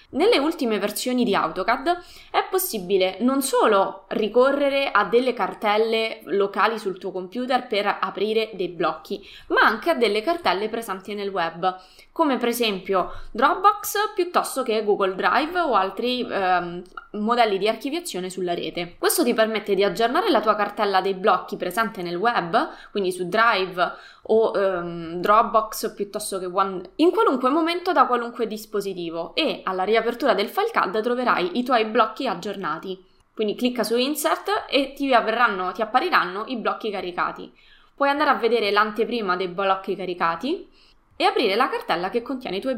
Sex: female